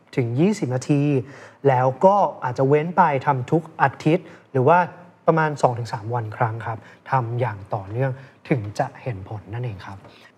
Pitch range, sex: 130-175 Hz, male